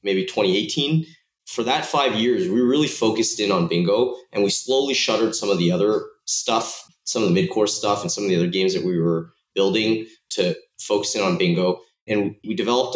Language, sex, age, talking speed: English, male, 20-39, 205 wpm